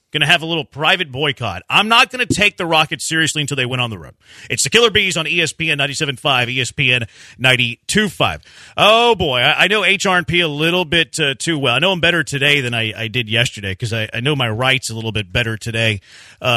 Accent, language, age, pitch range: American, English, 40-59, 135-190 Hz